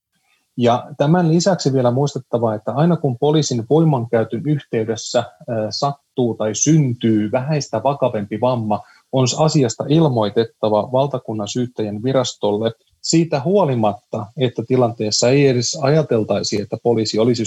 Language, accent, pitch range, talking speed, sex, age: Finnish, native, 115-150 Hz, 115 wpm, male, 30-49